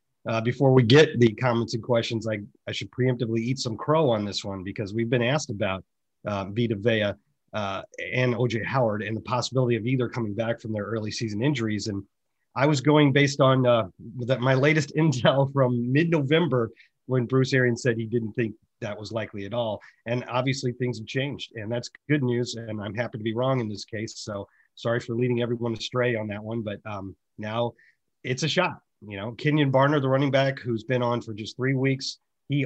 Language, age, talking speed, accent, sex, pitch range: English, 30-49, 210 wpm, American, male, 115-130 Hz